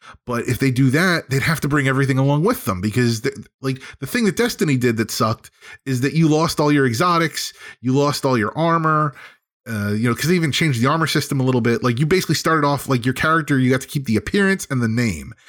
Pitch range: 120-150 Hz